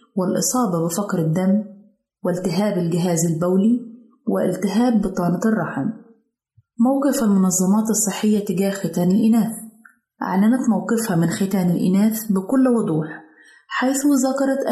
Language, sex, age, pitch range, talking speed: Arabic, female, 30-49, 185-225 Hz, 100 wpm